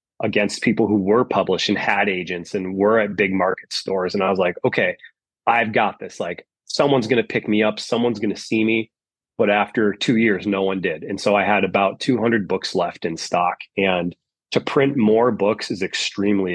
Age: 30-49